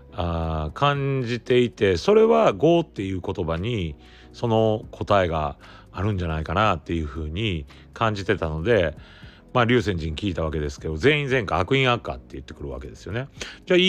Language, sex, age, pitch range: Japanese, male, 40-59, 80-125 Hz